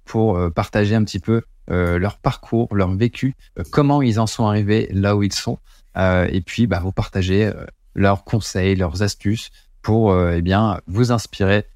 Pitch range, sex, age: 95-110 Hz, male, 20-39